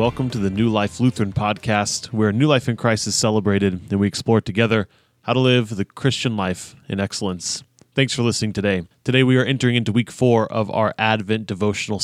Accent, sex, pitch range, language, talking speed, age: American, male, 100-125 Hz, English, 205 wpm, 20-39